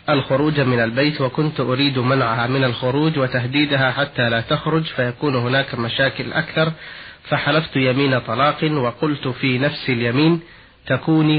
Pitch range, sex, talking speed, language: 125-150 Hz, male, 125 wpm, Arabic